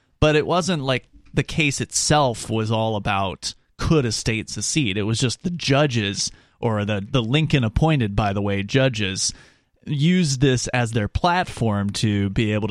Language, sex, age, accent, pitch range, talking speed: English, male, 30-49, American, 105-140 Hz, 170 wpm